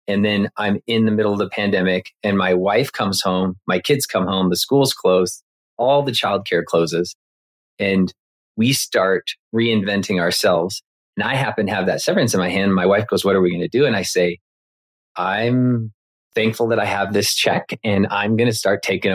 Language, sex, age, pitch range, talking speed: English, male, 30-49, 95-115 Hz, 205 wpm